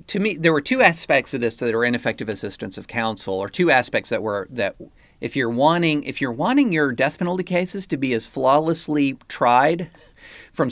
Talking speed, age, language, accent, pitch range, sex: 200 wpm, 40-59, English, American, 110-150 Hz, male